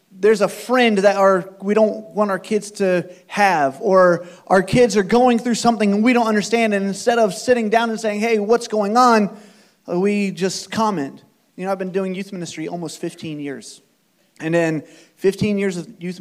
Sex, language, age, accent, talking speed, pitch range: male, English, 30-49, American, 195 wpm, 165-215 Hz